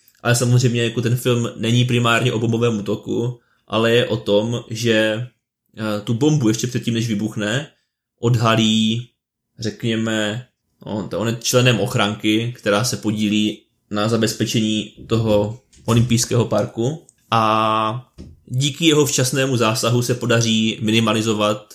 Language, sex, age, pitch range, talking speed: Czech, male, 20-39, 105-120 Hz, 115 wpm